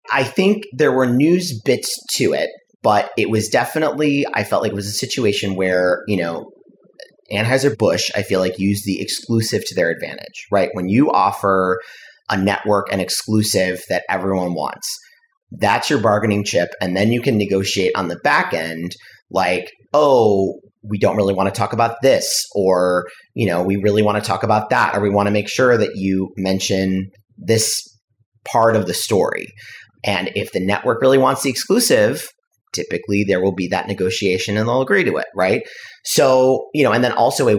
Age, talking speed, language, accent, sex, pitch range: 30-49, 185 wpm, English, American, male, 95-130 Hz